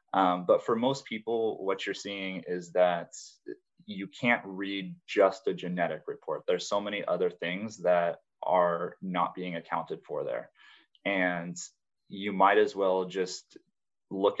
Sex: male